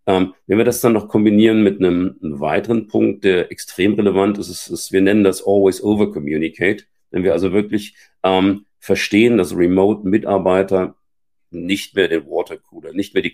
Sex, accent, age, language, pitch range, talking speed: male, German, 50-69, German, 90-105 Hz, 175 wpm